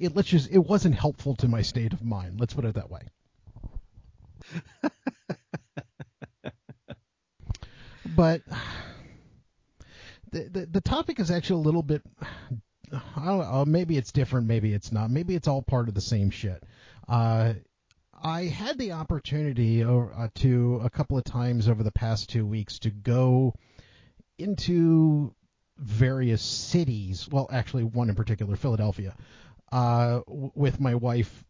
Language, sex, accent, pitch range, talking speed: English, male, American, 110-135 Hz, 140 wpm